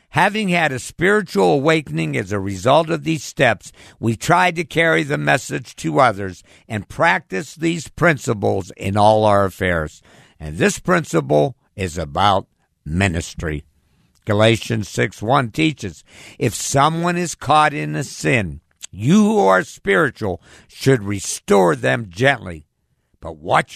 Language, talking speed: English, 135 wpm